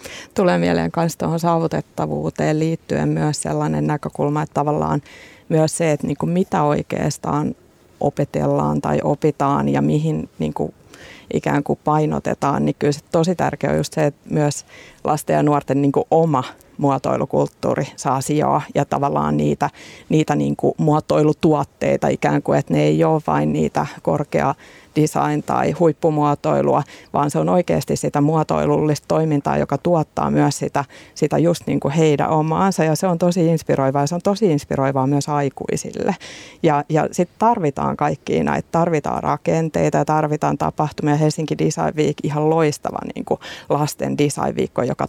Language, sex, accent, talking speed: Finnish, female, native, 140 wpm